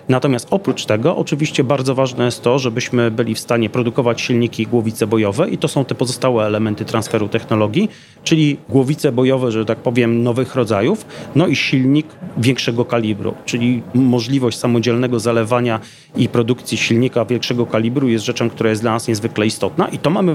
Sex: male